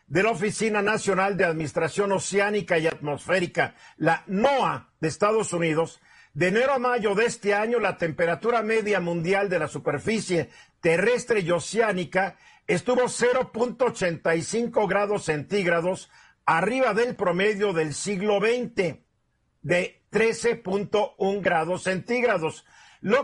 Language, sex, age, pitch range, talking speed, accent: Spanish, male, 50-69, 170-220 Hz, 120 wpm, Mexican